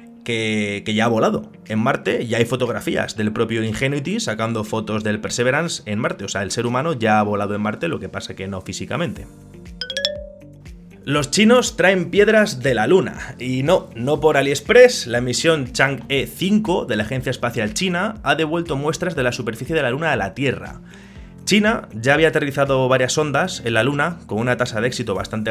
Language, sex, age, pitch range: Spanish, male, 20-39, 110-160 Hz